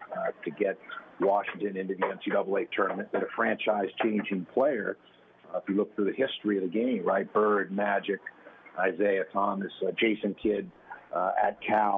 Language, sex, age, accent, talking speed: English, male, 50-69, American, 165 wpm